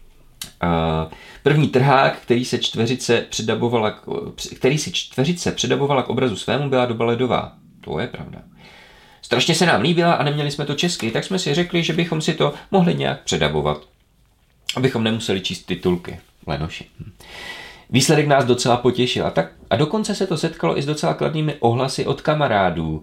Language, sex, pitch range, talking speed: Czech, male, 100-140 Hz, 165 wpm